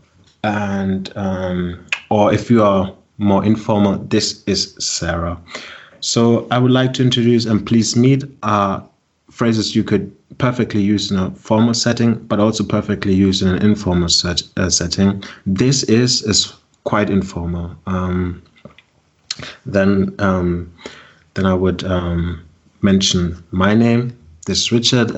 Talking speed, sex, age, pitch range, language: 140 wpm, male, 30-49, 95-115 Hz, English